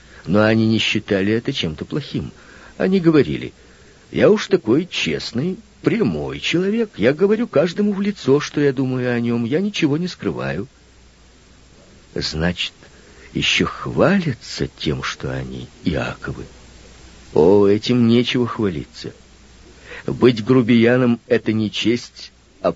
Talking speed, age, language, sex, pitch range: 120 wpm, 50-69, Russian, male, 105-170 Hz